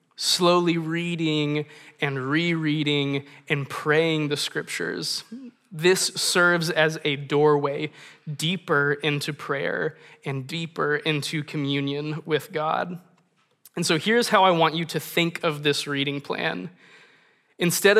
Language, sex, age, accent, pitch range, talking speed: English, male, 20-39, American, 145-165 Hz, 120 wpm